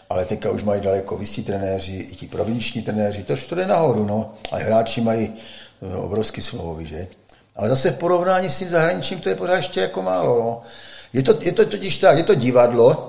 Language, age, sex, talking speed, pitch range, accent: Czech, 50-69, male, 210 wpm, 110-160 Hz, native